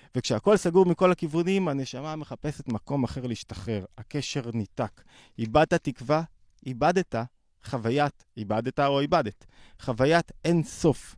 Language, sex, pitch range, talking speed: Hebrew, male, 115-155 Hz, 115 wpm